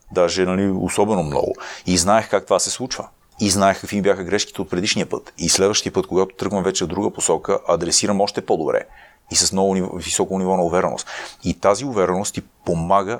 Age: 30-49